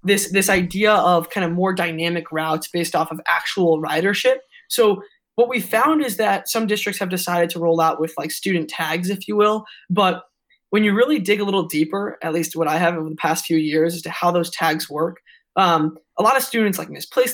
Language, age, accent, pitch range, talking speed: English, 20-39, American, 165-210 Hz, 225 wpm